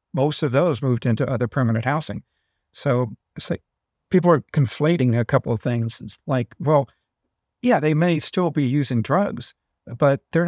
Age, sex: 50-69, male